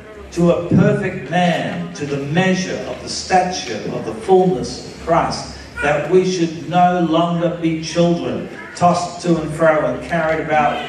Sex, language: male, English